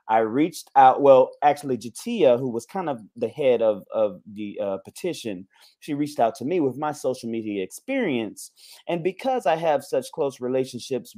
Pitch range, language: 120-155 Hz, English